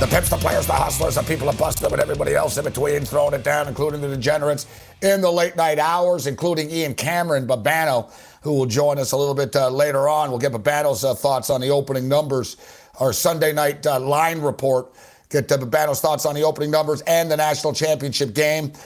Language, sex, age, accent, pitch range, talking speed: English, male, 60-79, American, 140-165 Hz, 220 wpm